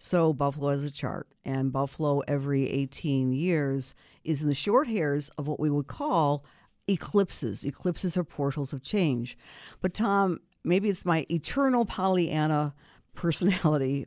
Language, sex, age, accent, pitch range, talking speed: English, female, 50-69, American, 145-195 Hz, 145 wpm